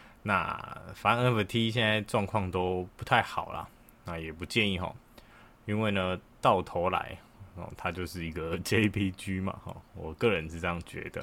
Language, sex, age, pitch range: Chinese, male, 20-39, 90-110 Hz